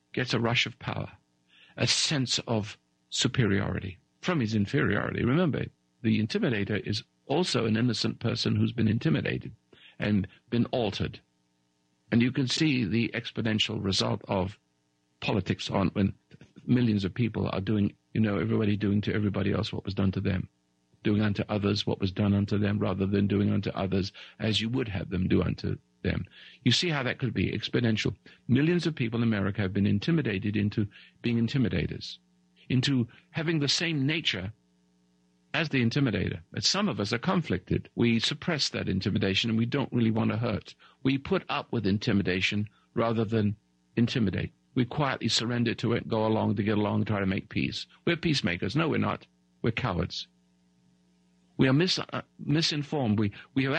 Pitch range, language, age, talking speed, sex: 95-125 Hz, English, 50-69, 170 wpm, male